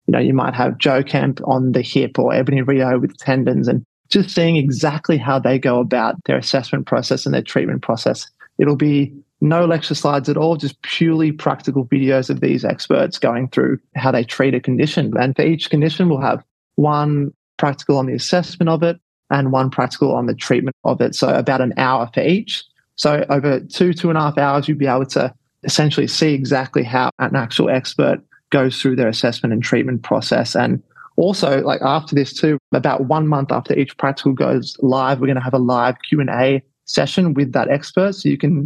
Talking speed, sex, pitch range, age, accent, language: 205 wpm, male, 130-150 Hz, 20-39, Australian, English